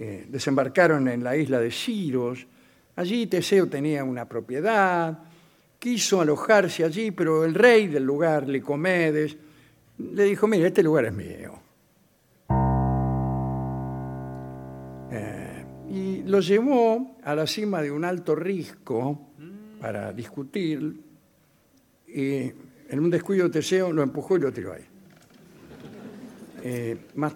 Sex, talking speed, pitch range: male, 120 wpm, 120-170 Hz